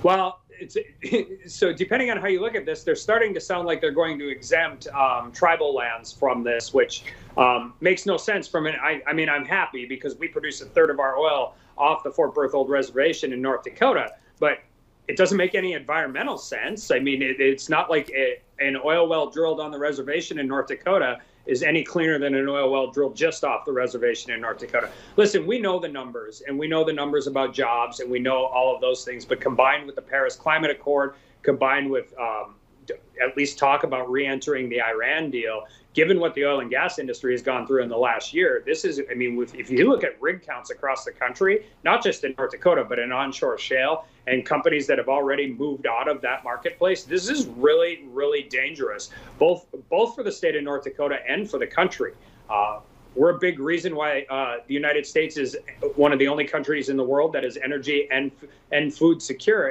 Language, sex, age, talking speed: English, male, 30-49, 220 wpm